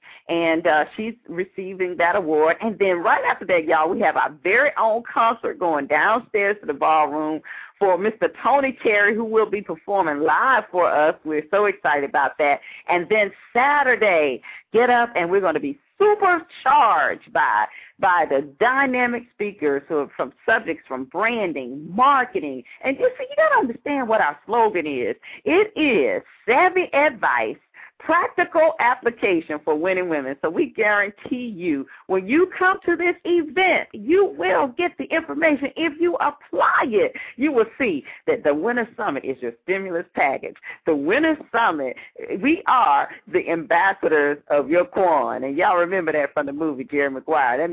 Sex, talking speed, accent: female, 165 wpm, American